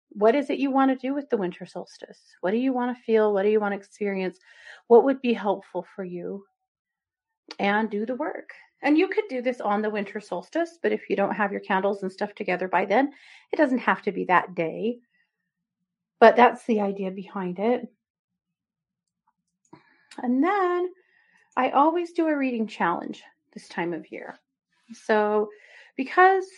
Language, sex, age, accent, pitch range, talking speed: English, female, 40-59, American, 195-285 Hz, 185 wpm